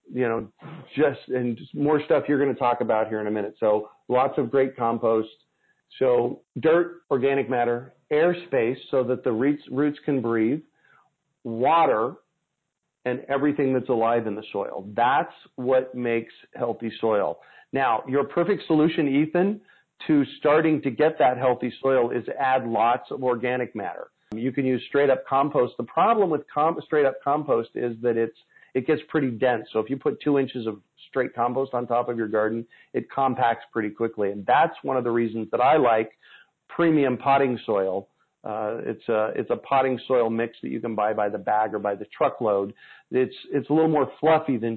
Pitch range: 115-145 Hz